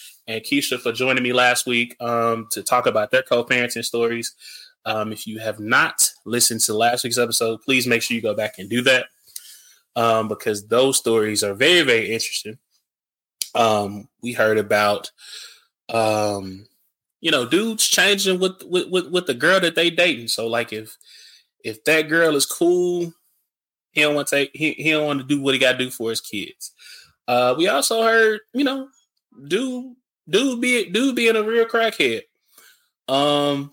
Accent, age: American, 20-39